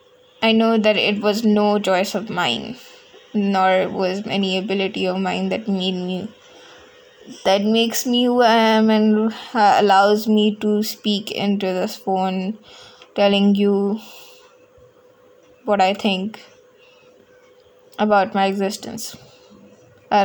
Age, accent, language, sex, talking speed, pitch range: 20-39, Indian, English, female, 125 wpm, 200-250 Hz